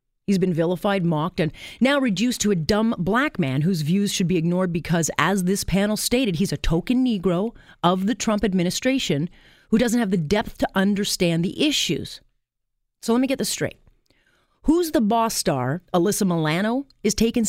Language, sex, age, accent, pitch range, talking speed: English, female, 40-59, American, 160-210 Hz, 180 wpm